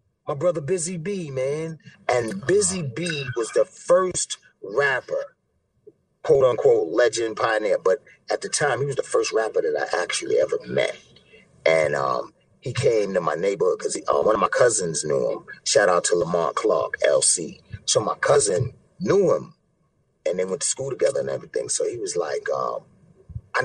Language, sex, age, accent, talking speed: English, male, 30-49, American, 175 wpm